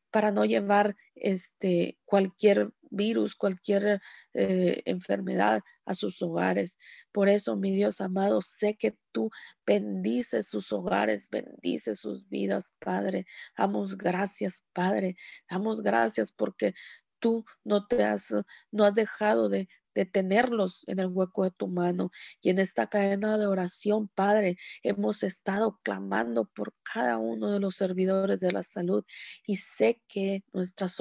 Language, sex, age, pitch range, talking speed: Spanish, female, 30-49, 185-210 Hz, 140 wpm